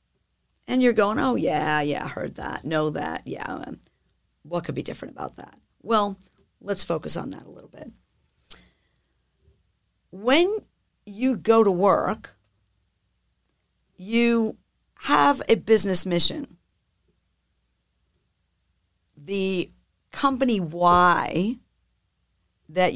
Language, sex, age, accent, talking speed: English, female, 50-69, American, 105 wpm